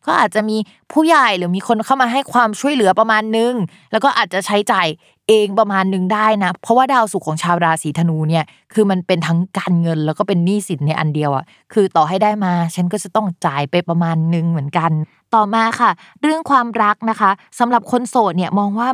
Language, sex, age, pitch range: Thai, female, 20-39, 170-220 Hz